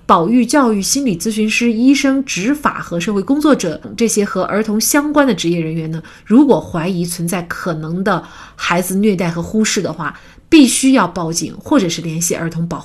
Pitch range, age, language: 165-220 Hz, 30-49, Chinese